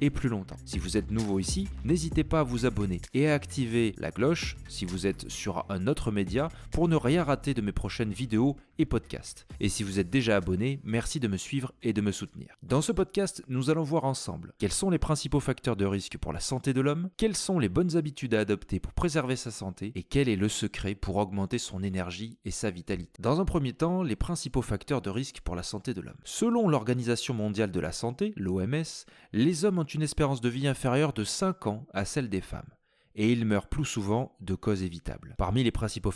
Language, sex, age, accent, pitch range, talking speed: French, male, 30-49, French, 100-145 Hz, 230 wpm